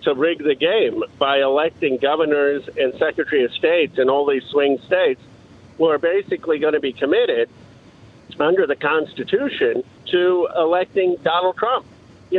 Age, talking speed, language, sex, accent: 50-69, 150 wpm, English, male, American